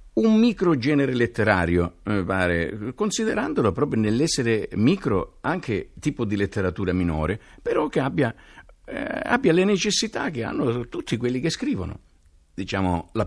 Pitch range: 85-130 Hz